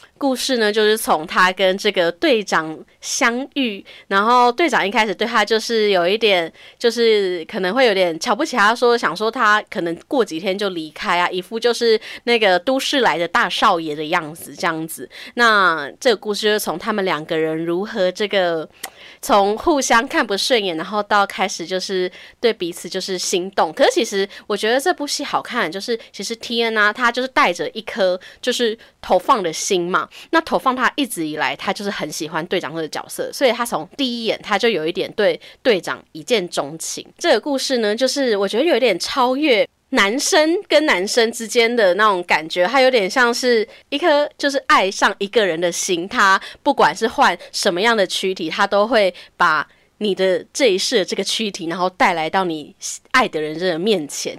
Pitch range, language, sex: 185-245 Hz, Chinese, female